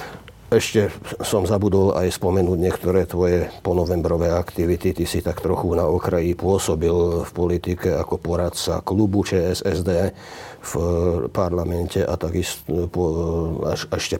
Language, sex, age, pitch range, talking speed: Slovak, male, 50-69, 90-120 Hz, 115 wpm